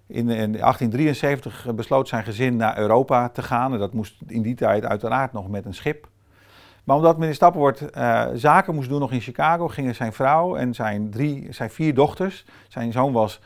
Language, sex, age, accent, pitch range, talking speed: Dutch, male, 40-59, Dutch, 105-140 Hz, 185 wpm